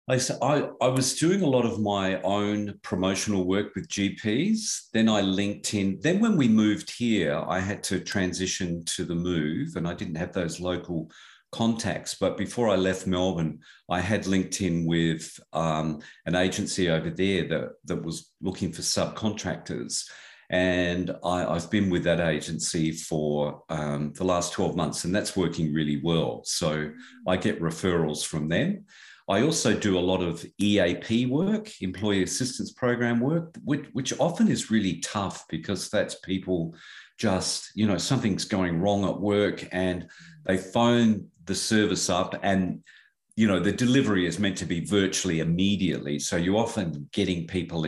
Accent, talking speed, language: Australian, 165 wpm, English